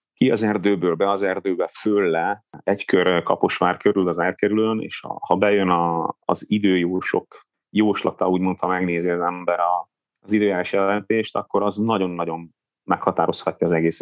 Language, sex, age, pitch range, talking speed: Hungarian, male, 30-49, 90-105 Hz, 150 wpm